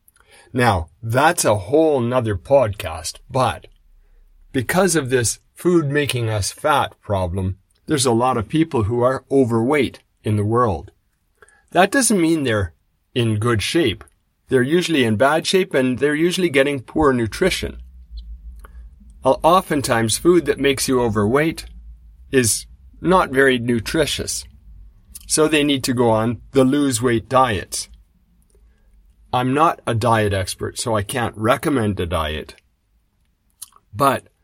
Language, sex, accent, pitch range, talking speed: English, male, American, 100-145 Hz, 125 wpm